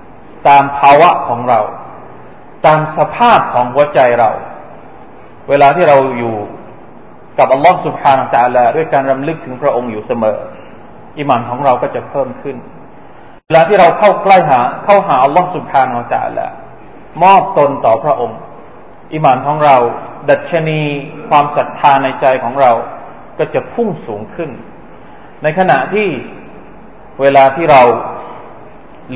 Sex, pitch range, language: male, 140-180 Hz, Thai